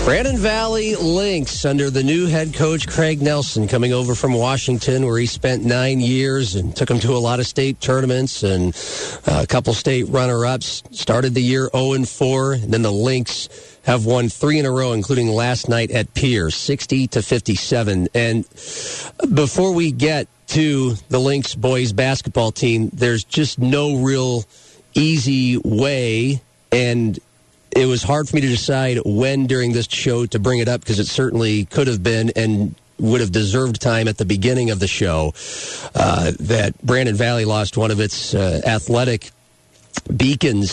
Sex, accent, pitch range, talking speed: male, American, 110-130 Hz, 170 wpm